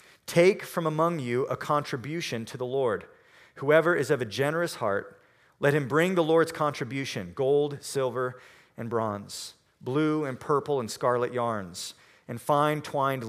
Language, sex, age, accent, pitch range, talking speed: English, male, 40-59, American, 130-170 Hz, 155 wpm